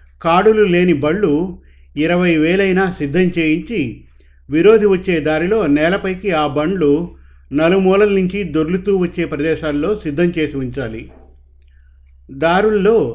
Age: 50-69